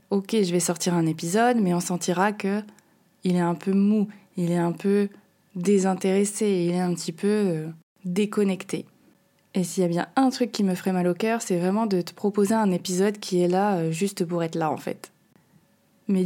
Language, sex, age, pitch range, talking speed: French, female, 20-39, 180-215 Hz, 205 wpm